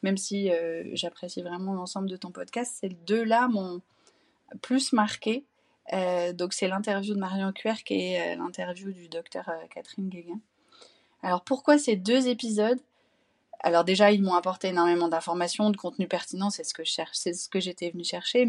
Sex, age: female, 30-49